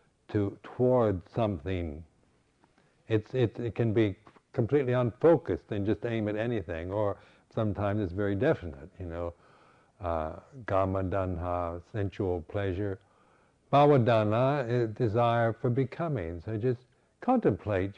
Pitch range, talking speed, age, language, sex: 95-125 Hz, 110 wpm, 60-79, English, male